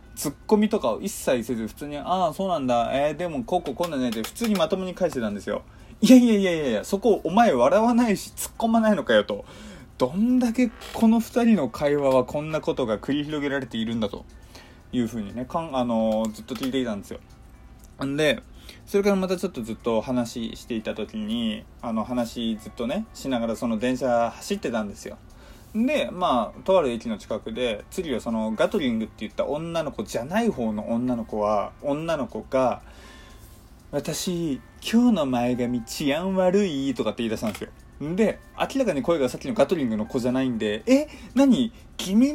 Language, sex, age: Japanese, male, 20-39